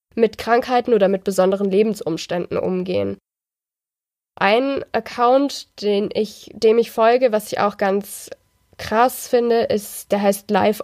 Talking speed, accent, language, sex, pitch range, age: 135 wpm, German, German, female, 200-240 Hz, 20-39